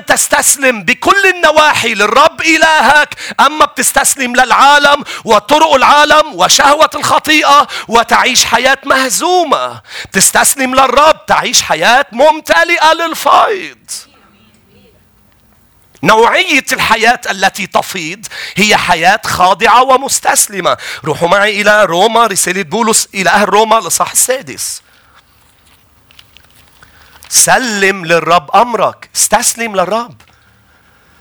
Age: 40-59